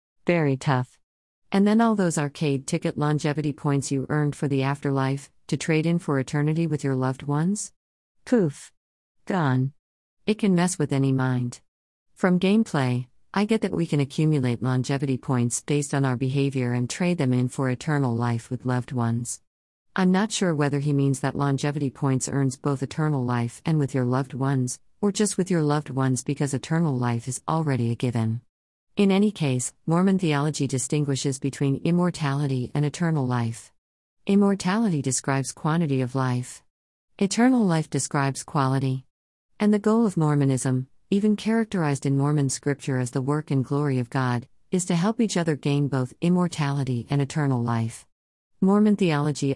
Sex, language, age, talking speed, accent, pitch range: female, English, 50-69, 165 wpm, American, 130-160 Hz